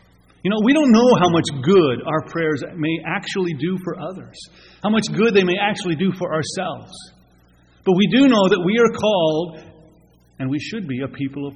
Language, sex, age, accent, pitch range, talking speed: English, male, 40-59, American, 105-170 Hz, 200 wpm